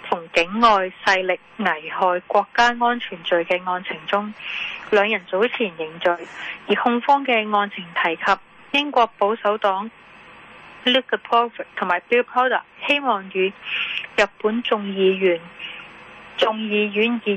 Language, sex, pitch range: Chinese, female, 190-235 Hz